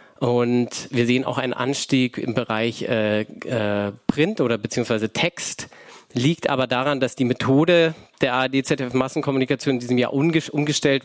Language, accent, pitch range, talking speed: German, German, 120-150 Hz, 145 wpm